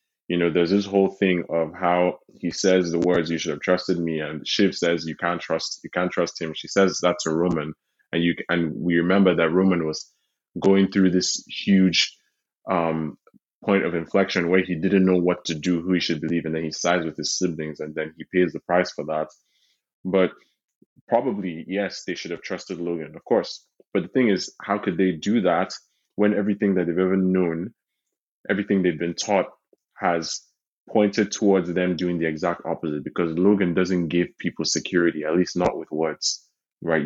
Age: 20-39